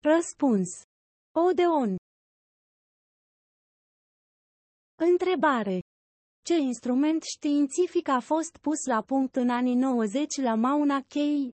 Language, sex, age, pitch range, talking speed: Romanian, female, 30-49, 235-320 Hz, 90 wpm